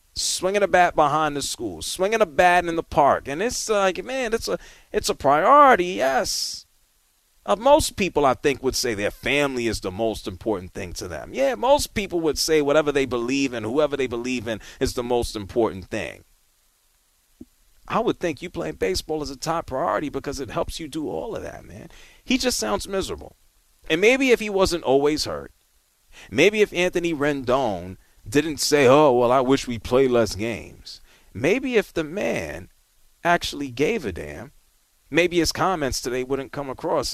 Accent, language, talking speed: American, English, 185 wpm